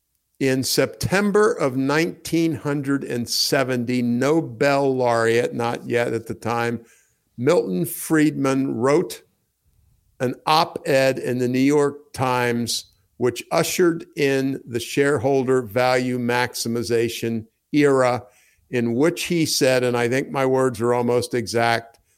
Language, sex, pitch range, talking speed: English, male, 115-145 Hz, 110 wpm